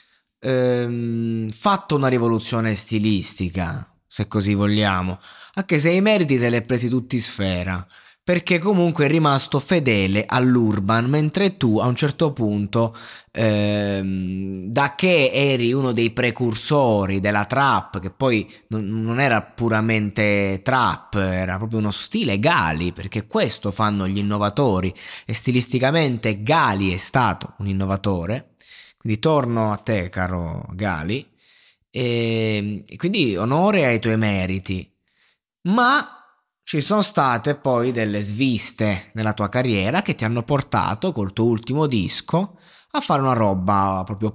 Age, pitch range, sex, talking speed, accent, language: 20-39, 105-145 Hz, male, 130 wpm, native, Italian